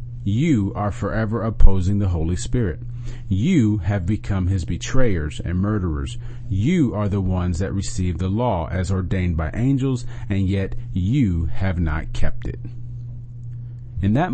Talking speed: 145 wpm